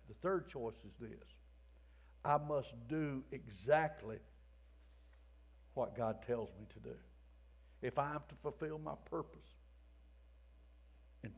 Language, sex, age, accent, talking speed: English, male, 60-79, American, 120 wpm